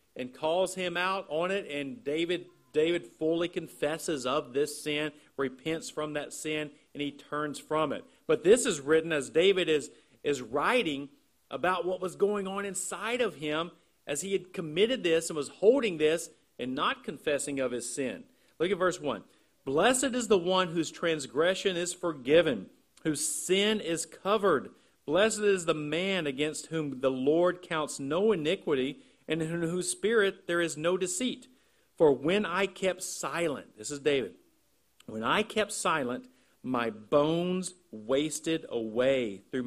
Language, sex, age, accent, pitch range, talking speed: English, male, 50-69, American, 145-185 Hz, 160 wpm